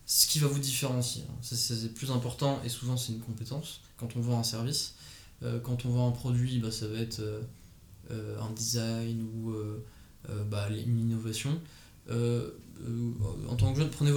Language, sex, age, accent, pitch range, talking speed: French, male, 20-39, French, 115-150 Hz, 185 wpm